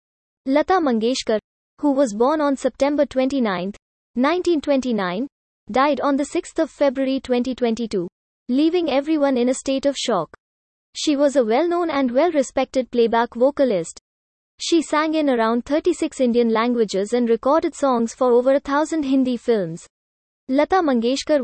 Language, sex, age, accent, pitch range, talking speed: English, female, 20-39, Indian, 235-290 Hz, 130 wpm